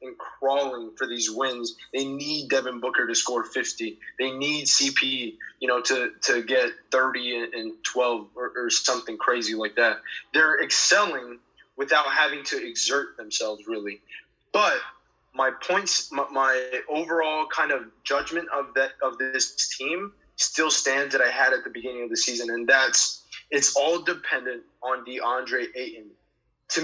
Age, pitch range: 20-39, 120-165 Hz